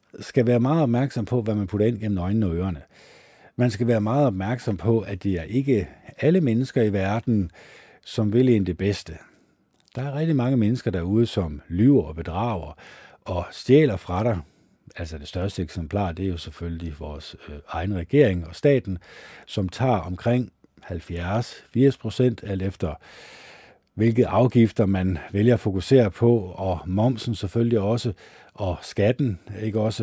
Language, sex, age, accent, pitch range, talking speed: Danish, male, 50-69, native, 90-115 Hz, 165 wpm